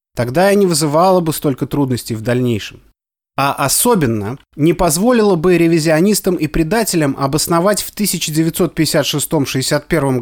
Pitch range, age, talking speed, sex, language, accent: 135-190 Hz, 30-49, 115 wpm, male, Russian, native